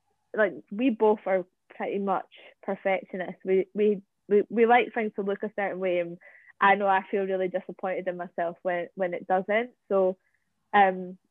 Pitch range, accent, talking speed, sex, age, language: 185-215 Hz, British, 175 wpm, female, 20-39, English